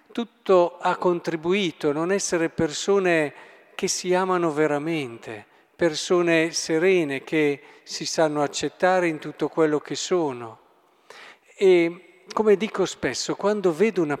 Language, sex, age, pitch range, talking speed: Italian, male, 50-69, 150-195 Hz, 125 wpm